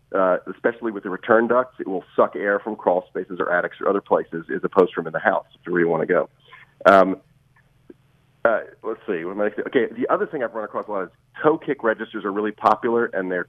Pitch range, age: 100-140 Hz, 40-59